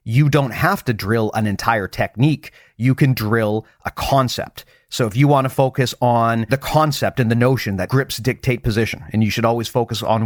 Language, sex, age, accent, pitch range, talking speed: English, male, 40-59, American, 105-130 Hz, 205 wpm